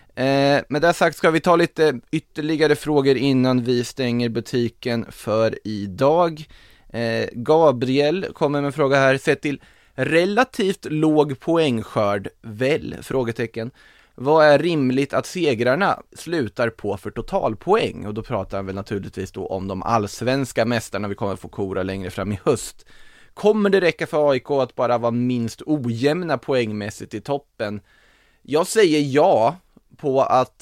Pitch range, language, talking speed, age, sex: 105-140 Hz, Swedish, 145 wpm, 20-39, male